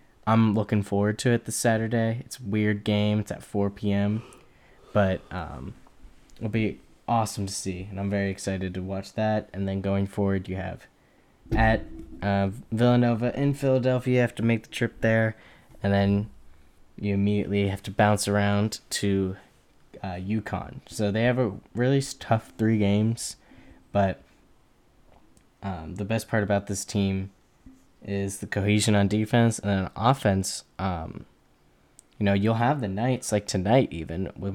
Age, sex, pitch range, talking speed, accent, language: 10-29, male, 95-110 Hz, 165 wpm, American, English